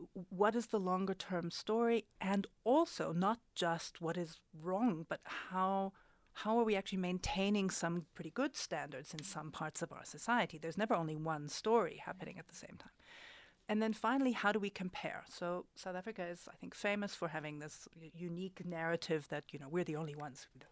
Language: English